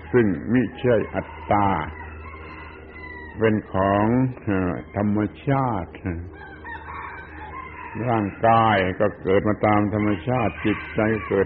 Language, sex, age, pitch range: Thai, male, 70-89, 95-120 Hz